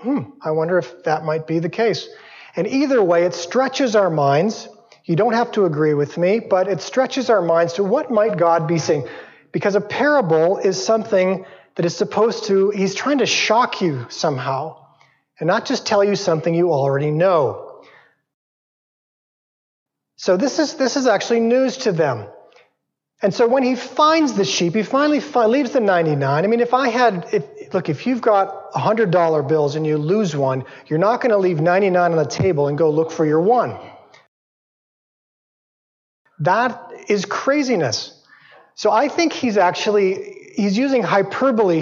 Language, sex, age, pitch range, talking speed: English, male, 40-59, 170-235 Hz, 175 wpm